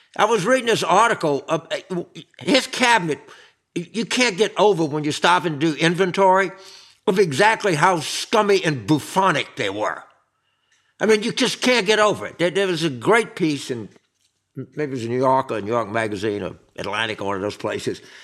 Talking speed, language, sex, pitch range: 190 wpm, English, male, 155-225 Hz